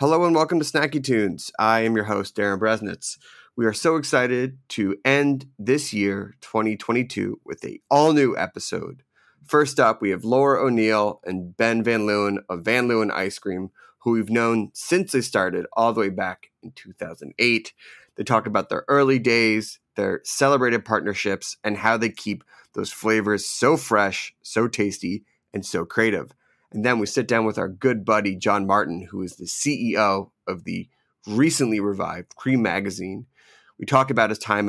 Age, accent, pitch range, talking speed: 30-49, American, 100-130 Hz, 175 wpm